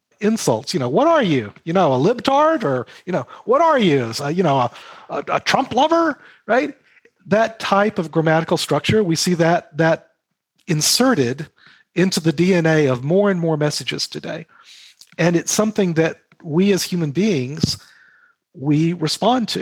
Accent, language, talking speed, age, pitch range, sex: American, English, 165 wpm, 40-59, 150-195 Hz, male